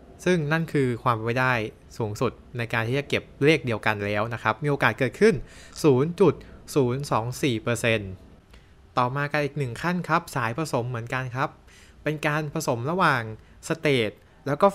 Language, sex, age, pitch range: Thai, male, 20-39, 110-150 Hz